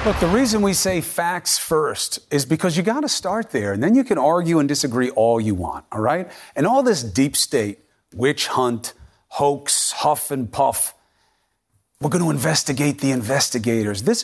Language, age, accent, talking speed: English, 40-59, American, 185 wpm